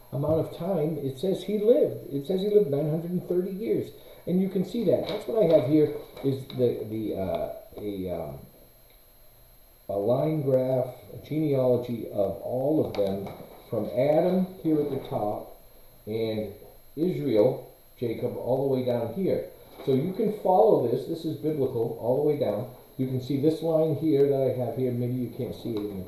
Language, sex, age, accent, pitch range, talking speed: English, male, 40-59, American, 120-160 Hz, 185 wpm